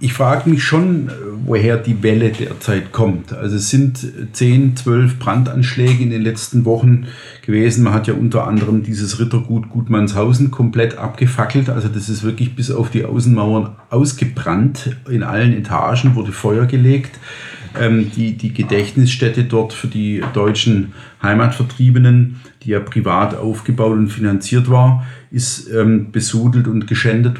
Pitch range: 110-125 Hz